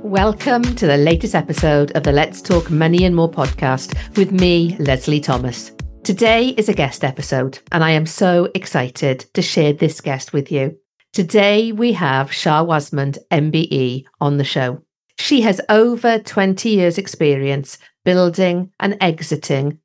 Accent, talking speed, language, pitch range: British, 155 wpm, English, 145-190 Hz